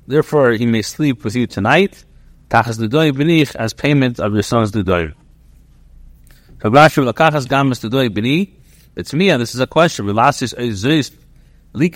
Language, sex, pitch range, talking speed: English, male, 115-150 Hz, 180 wpm